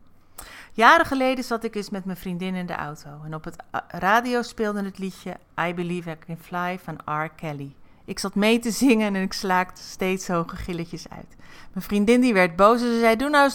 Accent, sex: Dutch, female